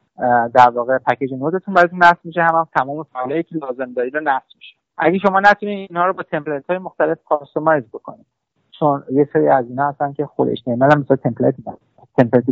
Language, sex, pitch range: Persian, male, 130-165 Hz